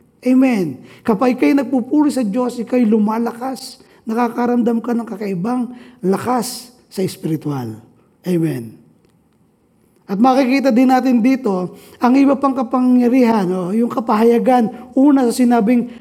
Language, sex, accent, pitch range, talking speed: Filipino, male, native, 215-265 Hz, 115 wpm